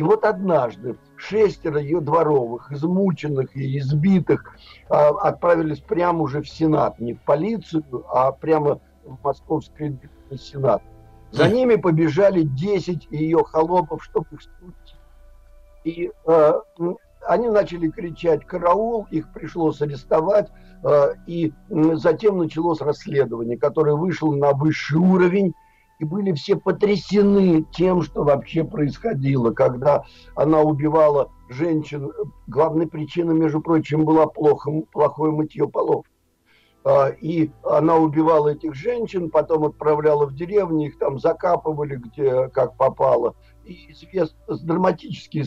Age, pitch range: 60-79, 145-170 Hz